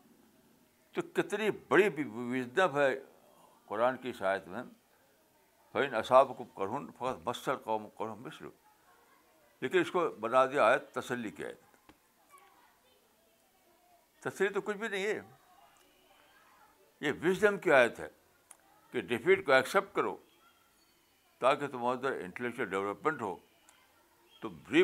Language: Urdu